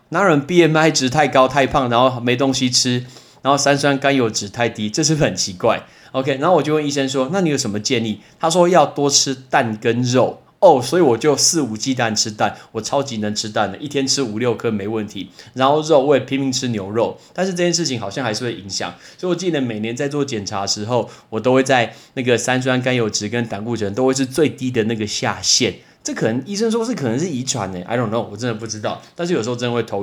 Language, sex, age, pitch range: Chinese, male, 20-39, 110-145 Hz